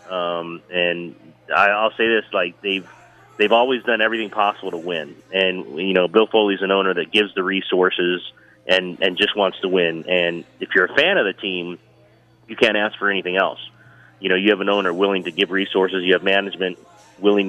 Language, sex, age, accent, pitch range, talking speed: English, male, 30-49, American, 90-105 Hz, 200 wpm